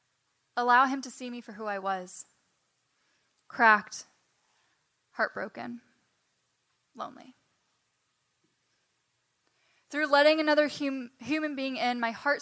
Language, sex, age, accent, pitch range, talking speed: English, female, 10-29, American, 220-265 Hz, 95 wpm